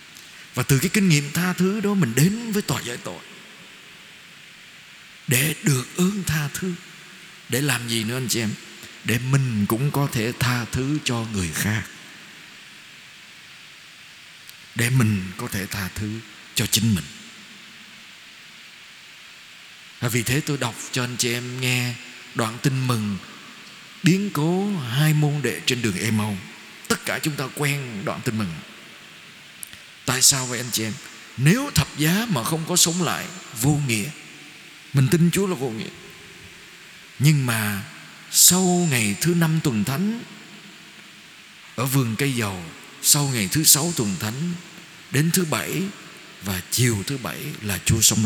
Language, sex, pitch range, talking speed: Vietnamese, male, 115-165 Hz, 155 wpm